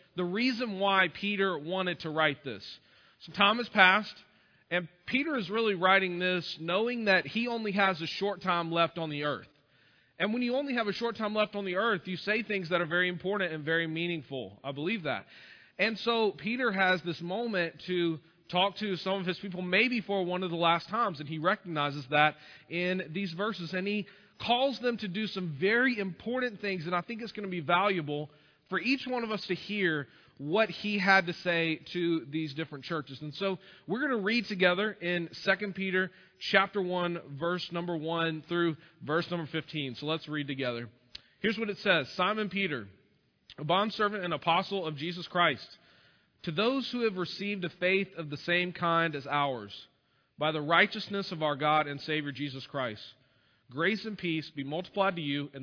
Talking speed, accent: 195 wpm, American